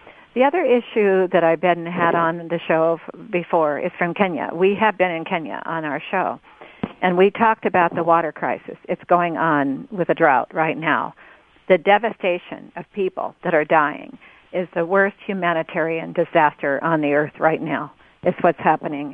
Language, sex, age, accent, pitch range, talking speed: English, female, 50-69, American, 170-210 Hz, 180 wpm